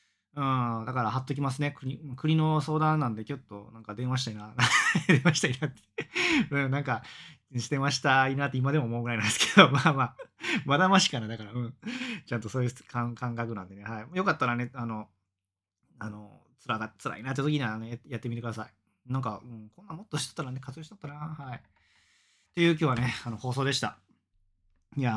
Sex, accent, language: male, native, Japanese